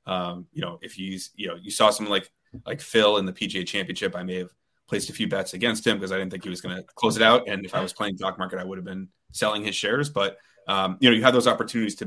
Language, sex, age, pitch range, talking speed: English, male, 30-49, 95-110 Hz, 300 wpm